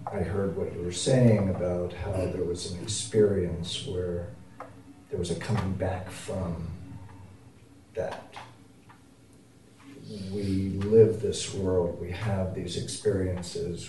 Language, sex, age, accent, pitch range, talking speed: English, male, 50-69, American, 90-110 Hz, 120 wpm